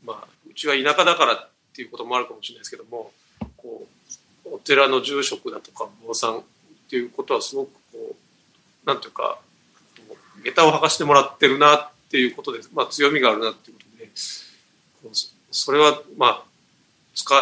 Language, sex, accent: Japanese, male, native